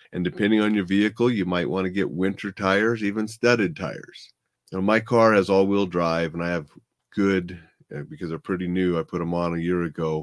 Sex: male